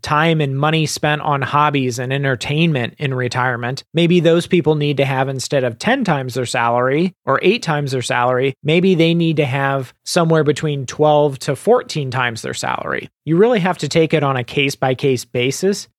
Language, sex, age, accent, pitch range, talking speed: English, male, 30-49, American, 135-165 Hz, 190 wpm